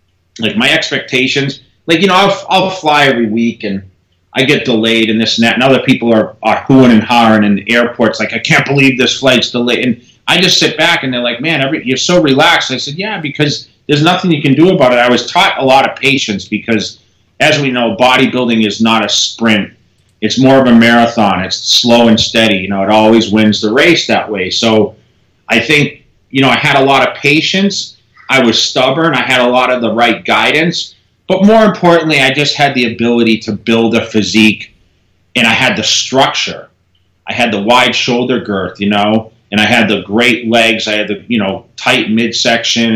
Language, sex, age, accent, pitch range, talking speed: English, male, 30-49, American, 110-135 Hz, 220 wpm